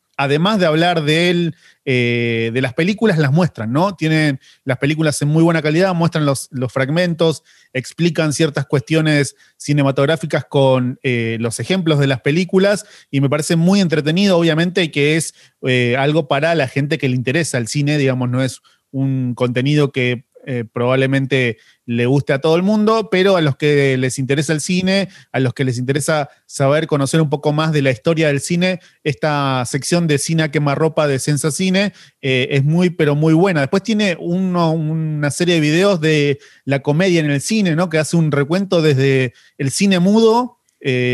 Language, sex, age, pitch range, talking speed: Spanish, male, 30-49, 135-165 Hz, 185 wpm